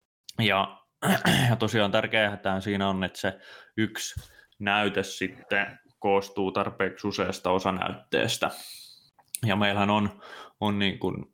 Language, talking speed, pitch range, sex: Finnish, 115 wpm, 95-105 Hz, male